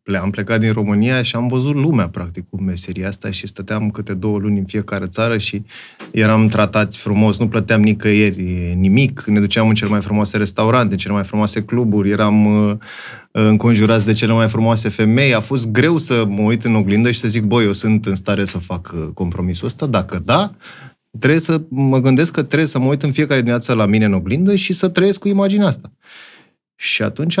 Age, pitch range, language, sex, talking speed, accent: 20-39, 105-155 Hz, Romanian, male, 205 wpm, native